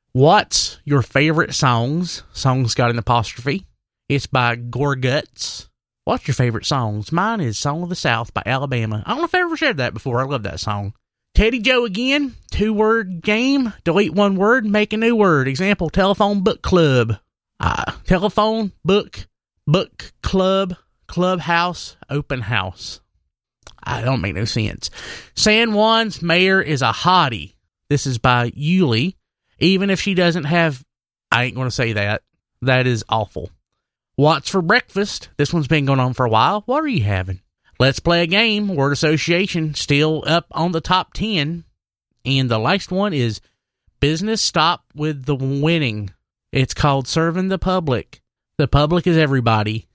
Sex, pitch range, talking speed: male, 120-185 Hz, 165 wpm